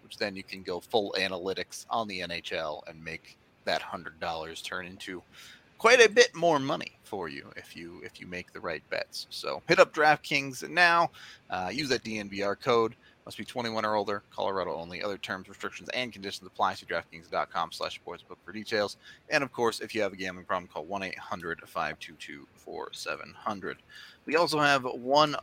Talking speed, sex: 170 wpm, male